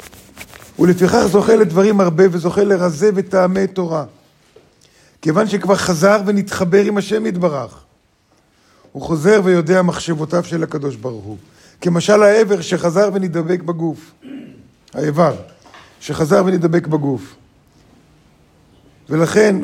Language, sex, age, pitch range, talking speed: Hebrew, male, 50-69, 140-190 Hz, 100 wpm